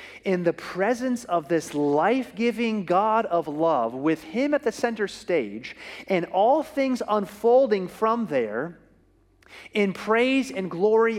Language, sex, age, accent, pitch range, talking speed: English, male, 30-49, American, 185-255 Hz, 135 wpm